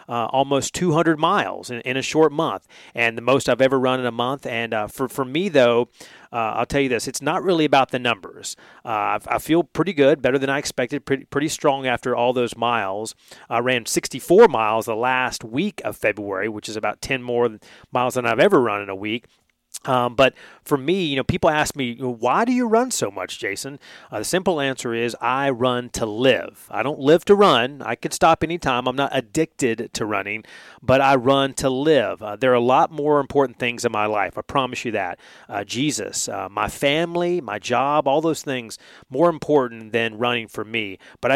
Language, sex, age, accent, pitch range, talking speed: English, male, 30-49, American, 120-145 Hz, 215 wpm